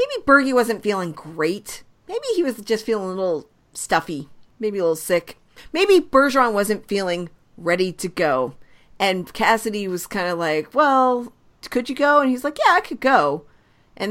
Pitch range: 175-245 Hz